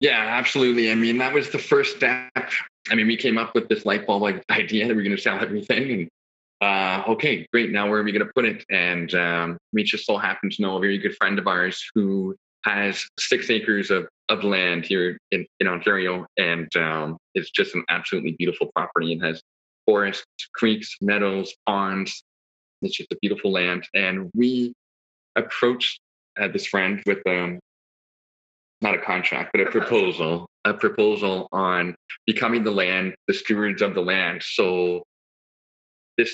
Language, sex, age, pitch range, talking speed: English, male, 20-39, 90-110 Hz, 180 wpm